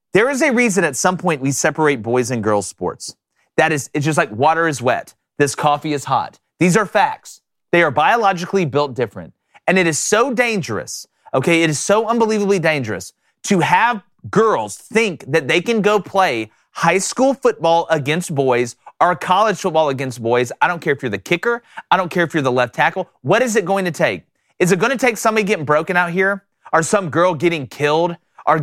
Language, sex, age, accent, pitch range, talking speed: English, male, 30-49, American, 155-220 Hz, 210 wpm